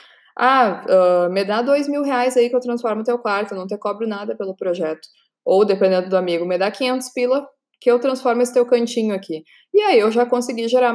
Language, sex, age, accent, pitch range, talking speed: Portuguese, female, 20-39, Brazilian, 190-245 Hz, 230 wpm